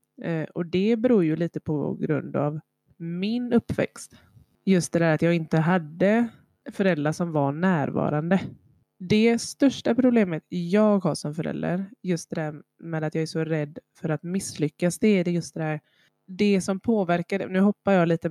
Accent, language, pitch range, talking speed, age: native, Swedish, 155-185 Hz, 170 wpm, 20-39